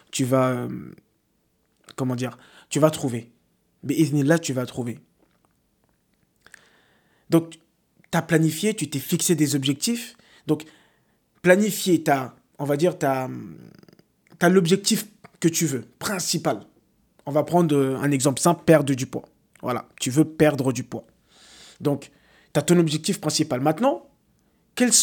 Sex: male